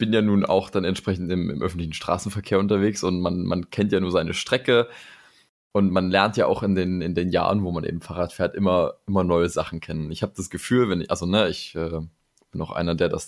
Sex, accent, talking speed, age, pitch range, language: male, German, 245 wpm, 20-39, 85-105 Hz, German